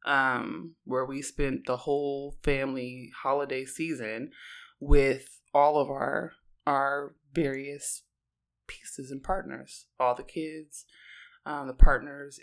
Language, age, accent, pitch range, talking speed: English, 20-39, American, 135-170 Hz, 115 wpm